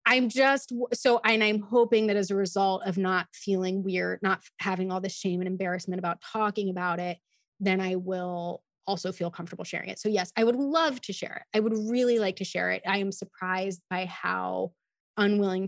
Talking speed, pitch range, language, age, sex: 205 wpm, 185-220 Hz, English, 20-39, female